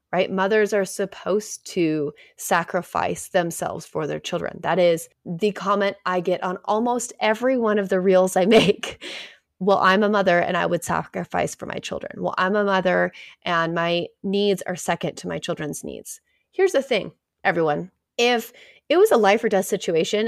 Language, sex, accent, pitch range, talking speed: English, female, American, 185-225 Hz, 180 wpm